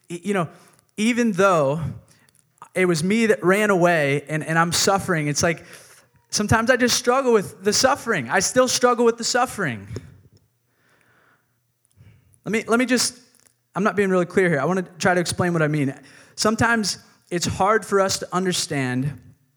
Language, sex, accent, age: English, male, American, 20-39